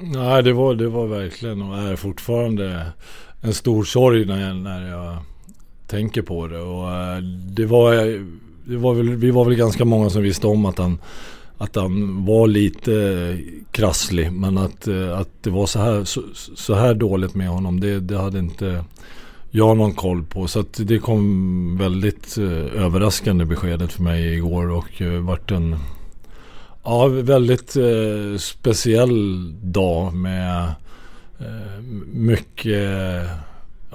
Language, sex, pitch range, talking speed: English, male, 90-110 Hz, 150 wpm